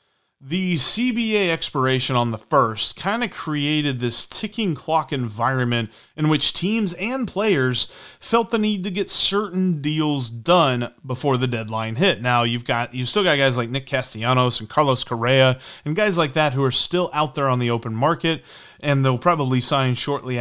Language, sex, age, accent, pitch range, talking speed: English, male, 30-49, American, 120-170 Hz, 180 wpm